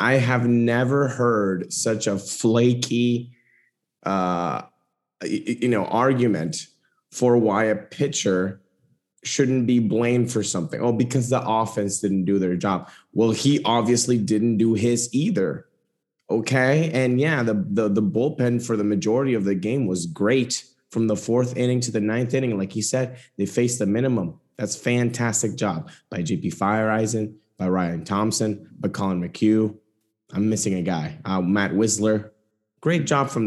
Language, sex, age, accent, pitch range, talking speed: English, male, 20-39, American, 105-125 Hz, 155 wpm